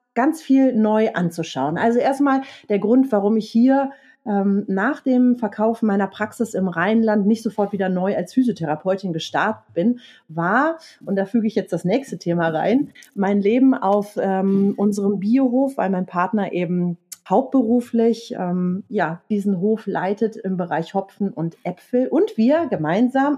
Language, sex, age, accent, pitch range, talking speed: German, female, 30-49, German, 195-255 Hz, 155 wpm